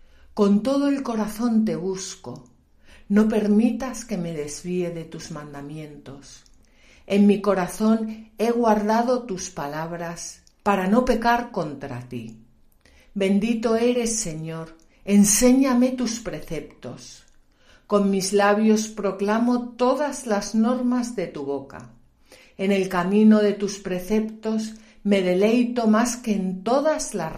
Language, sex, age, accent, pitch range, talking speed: Spanish, female, 50-69, Spanish, 165-220 Hz, 120 wpm